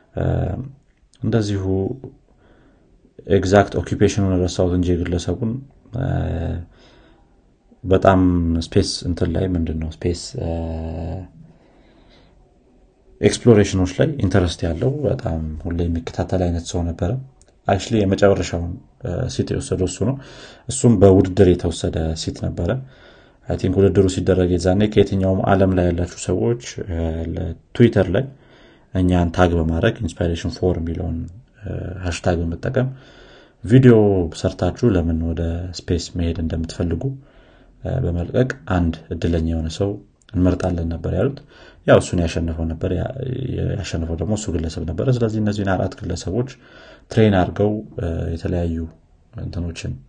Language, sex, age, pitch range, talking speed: Amharic, male, 30-49, 85-110 Hz, 100 wpm